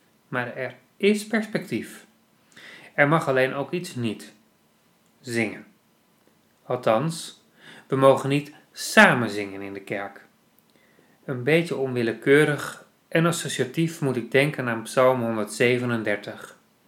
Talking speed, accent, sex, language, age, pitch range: 110 wpm, Dutch, male, Dutch, 30-49, 115-140 Hz